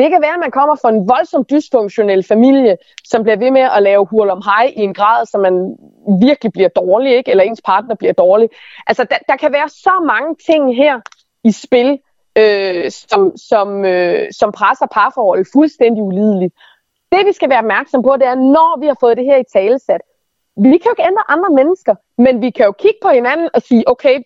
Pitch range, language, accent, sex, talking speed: 215-300 Hz, Danish, native, female, 215 wpm